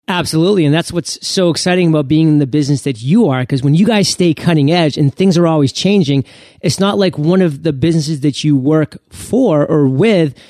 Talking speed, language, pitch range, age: 225 wpm, English, 145-185 Hz, 30-49